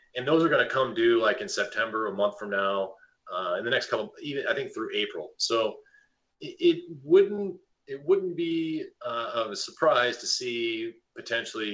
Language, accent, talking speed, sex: English, American, 195 wpm, male